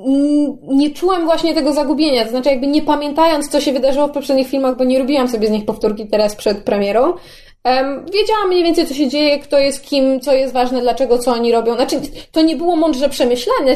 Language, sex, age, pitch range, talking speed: Polish, female, 20-39, 250-295 Hz, 210 wpm